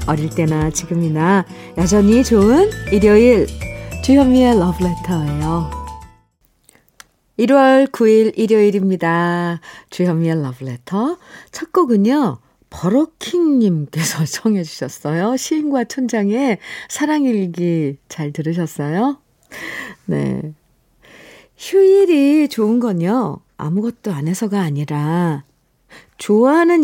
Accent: native